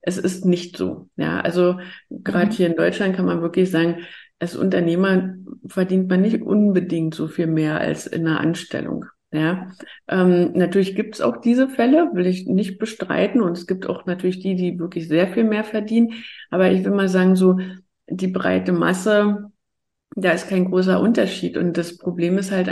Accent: German